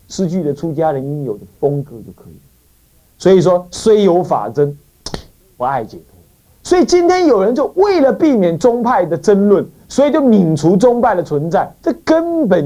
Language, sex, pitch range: Chinese, male, 135-220 Hz